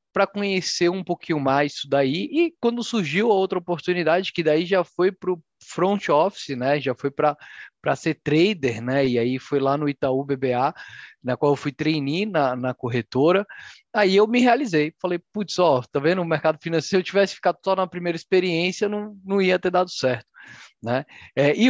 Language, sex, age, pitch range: Portuguese, male, 20-39, 145-210 Hz